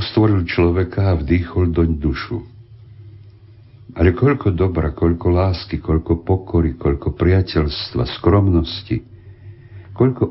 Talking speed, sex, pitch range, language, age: 100 wpm, male, 80-105 Hz, Slovak, 60-79